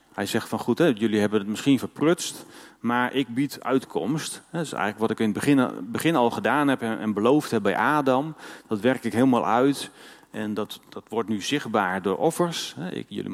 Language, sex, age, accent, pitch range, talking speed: Dutch, male, 40-59, Dutch, 110-135 Hz, 200 wpm